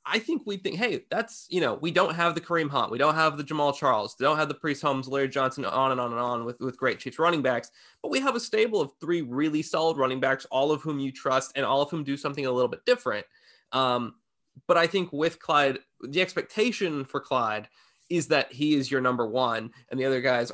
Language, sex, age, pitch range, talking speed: English, male, 20-39, 130-160 Hz, 250 wpm